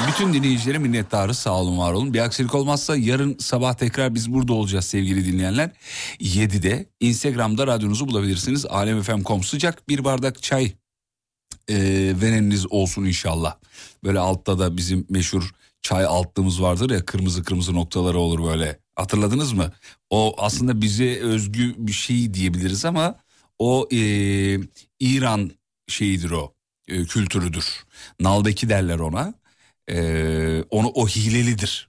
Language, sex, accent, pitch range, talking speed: Turkish, male, native, 95-130 Hz, 130 wpm